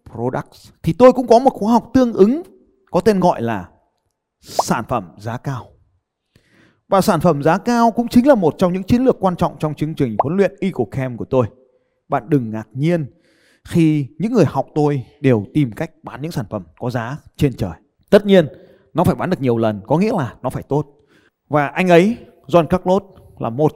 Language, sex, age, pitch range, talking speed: Vietnamese, male, 20-39, 125-185 Hz, 210 wpm